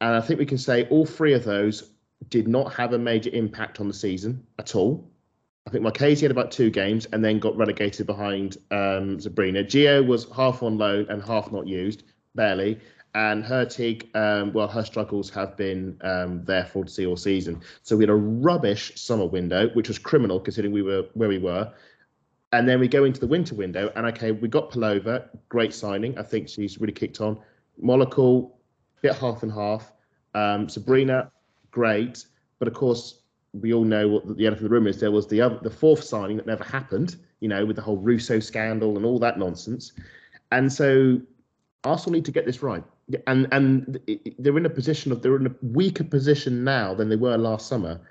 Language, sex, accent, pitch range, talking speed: English, male, British, 105-125 Hz, 210 wpm